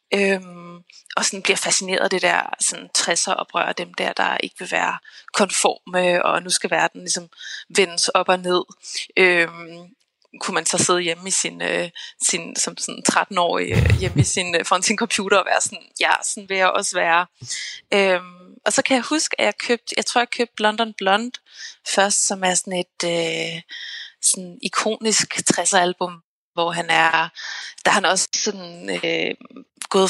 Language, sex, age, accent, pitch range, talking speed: Danish, female, 20-39, native, 175-205 Hz, 180 wpm